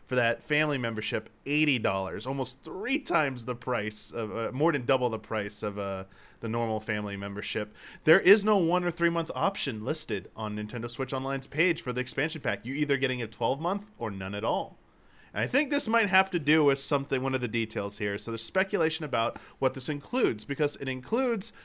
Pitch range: 115-150 Hz